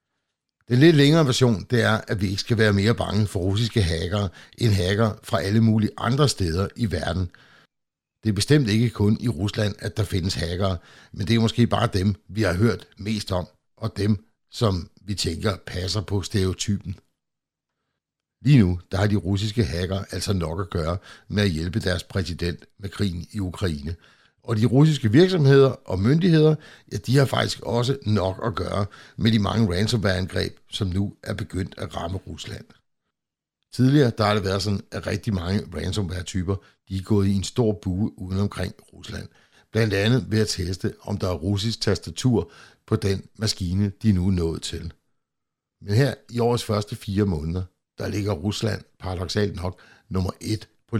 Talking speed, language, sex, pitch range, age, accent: 180 wpm, Danish, male, 95-110 Hz, 60-79, native